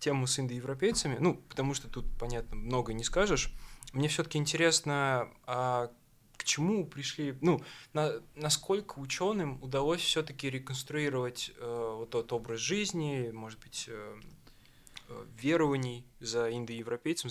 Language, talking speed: Russian, 125 wpm